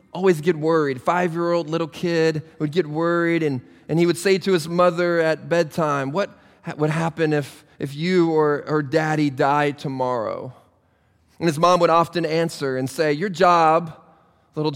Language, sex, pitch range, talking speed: English, male, 145-170 Hz, 170 wpm